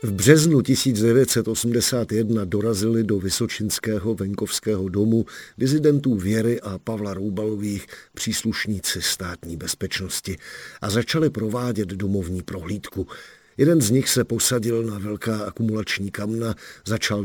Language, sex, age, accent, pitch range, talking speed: Czech, male, 50-69, native, 95-115 Hz, 110 wpm